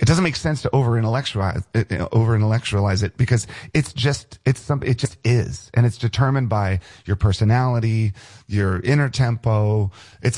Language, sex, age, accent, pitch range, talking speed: English, male, 40-59, American, 105-135 Hz, 150 wpm